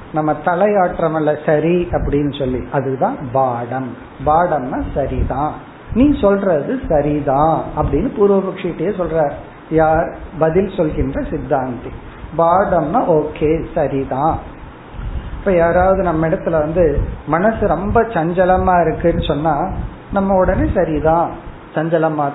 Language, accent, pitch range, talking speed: Tamil, native, 150-200 Hz, 60 wpm